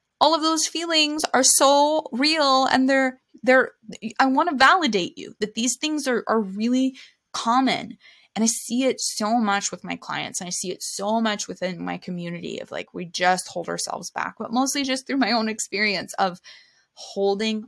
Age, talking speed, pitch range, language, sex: 20-39, 190 wpm, 180-235 Hz, English, female